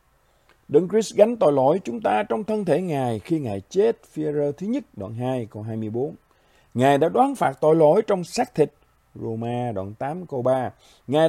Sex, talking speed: male, 195 wpm